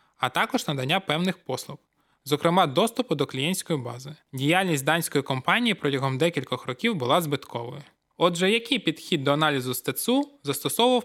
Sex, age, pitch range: male, 20-39, 140-190 Hz